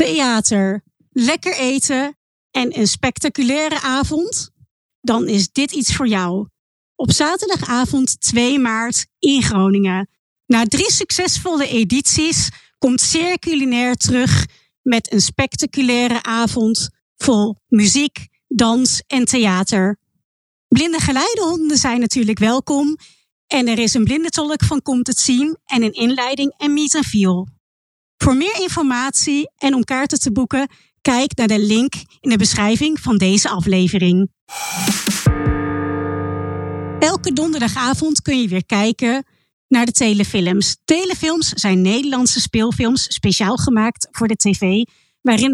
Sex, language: female, Dutch